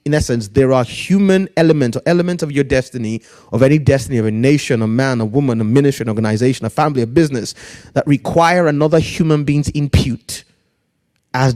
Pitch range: 115-145 Hz